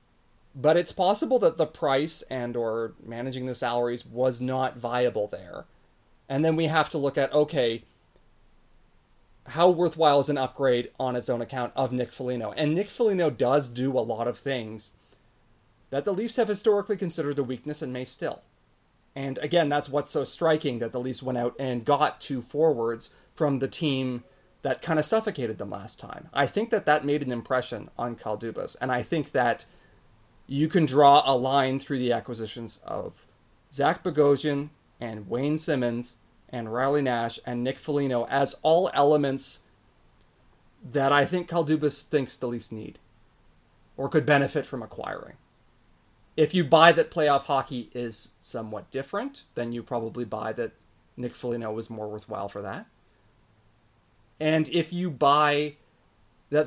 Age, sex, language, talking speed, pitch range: 30-49, male, English, 165 wpm, 120-150 Hz